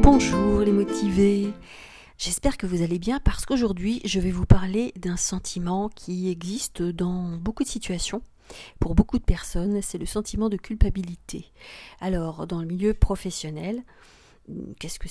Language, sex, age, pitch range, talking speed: French, female, 40-59, 170-210 Hz, 150 wpm